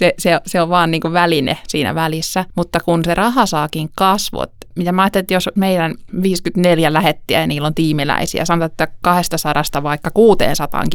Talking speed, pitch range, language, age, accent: 180 wpm, 155-180 Hz, Finnish, 20-39, native